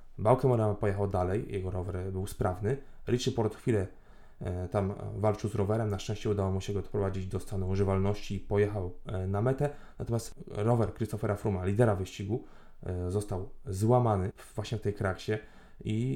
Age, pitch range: 20-39, 100-115 Hz